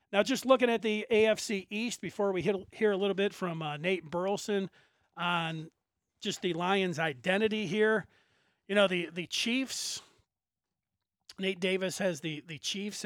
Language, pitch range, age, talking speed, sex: English, 175-210 Hz, 40-59, 160 wpm, male